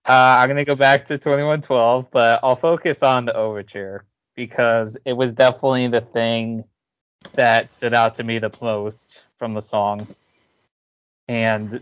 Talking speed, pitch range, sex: 150 wpm, 110-130 Hz, male